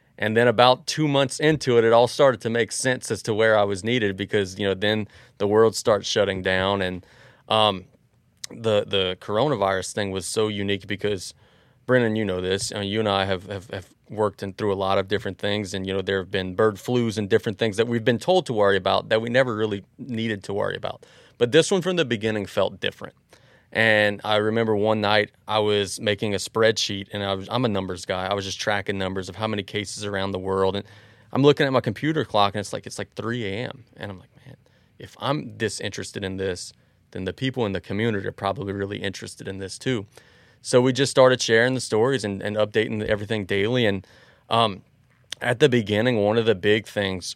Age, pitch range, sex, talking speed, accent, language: 30-49, 100-115 Hz, male, 225 wpm, American, English